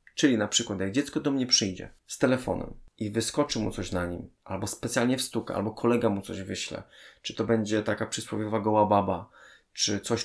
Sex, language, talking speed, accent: male, Polish, 200 wpm, native